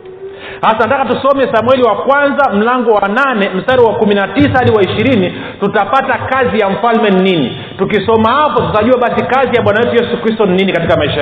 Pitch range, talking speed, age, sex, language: 195-245 Hz, 180 wpm, 40-59, male, Swahili